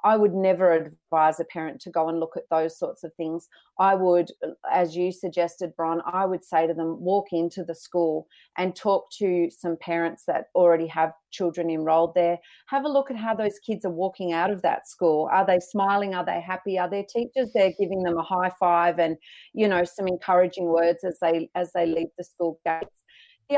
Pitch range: 175-220 Hz